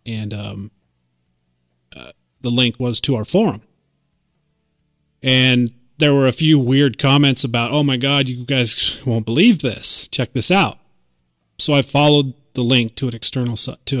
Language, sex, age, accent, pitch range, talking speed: English, male, 30-49, American, 85-140 Hz, 160 wpm